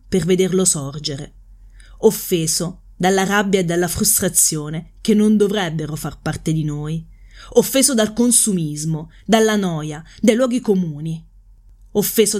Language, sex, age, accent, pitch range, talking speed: Italian, female, 30-49, native, 150-215 Hz, 120 wpm